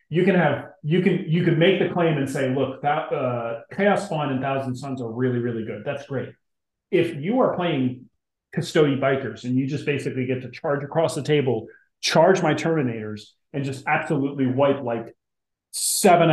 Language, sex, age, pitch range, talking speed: English, male, 30-49, 125-155 Hz, 185 wpm